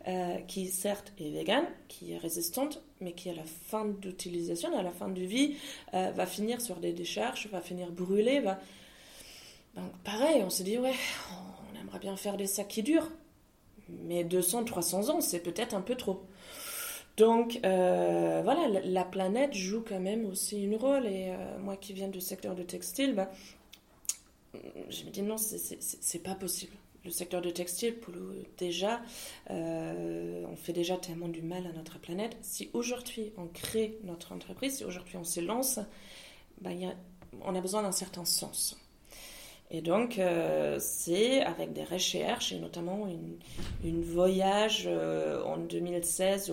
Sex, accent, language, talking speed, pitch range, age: female, French, French, 170 wpm, 175-215 Hz, 20-39